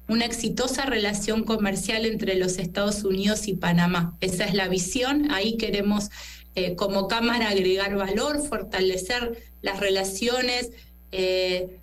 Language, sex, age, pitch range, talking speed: Spanish, female, 20-39, 195-230 Hz, 125 wpm